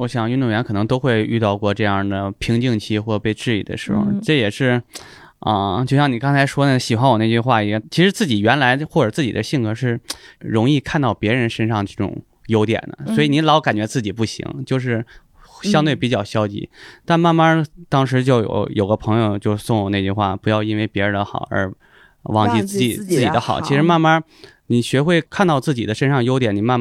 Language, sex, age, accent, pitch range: Chinese, male, 20-39, native, 105-135 Hz